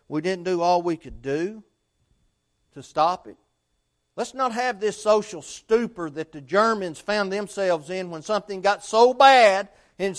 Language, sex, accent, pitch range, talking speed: English, male, American, 130-200 Hz, 165 wpm